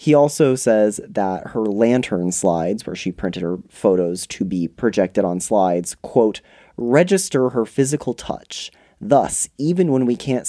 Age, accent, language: 30-49, American, English